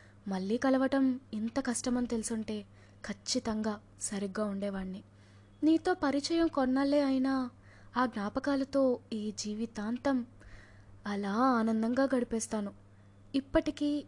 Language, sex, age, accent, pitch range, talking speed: Telugu, female, 20-39, native, 200-255 Hz, 85 wpm